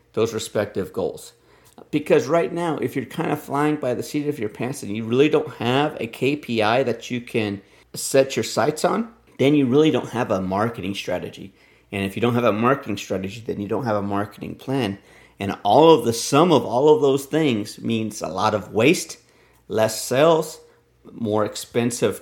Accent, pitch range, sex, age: American, 110-150 Hz, male, 50-69